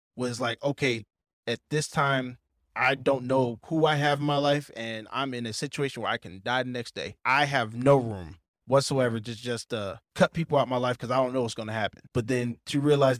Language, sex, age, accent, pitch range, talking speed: English, male, 20-39, American, 120-145 Hz, 240 wpm